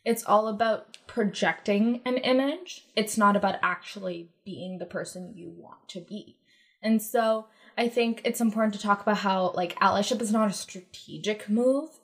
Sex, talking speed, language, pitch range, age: female, 170 wpm, English, 195-235 Hz, 20-39